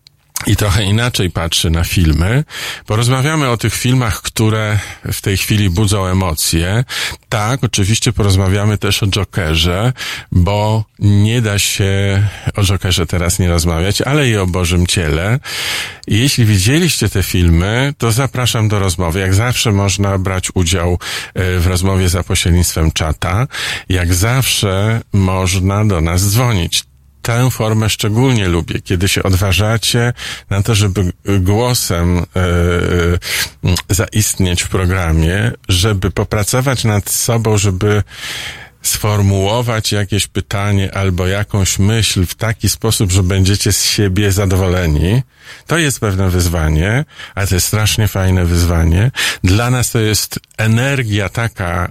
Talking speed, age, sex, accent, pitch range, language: 125 wpm, 50-69, male, native, 90-110 Hz, Polish